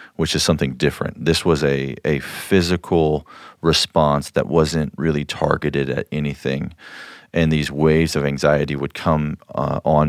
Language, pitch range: English, 70-80 Hz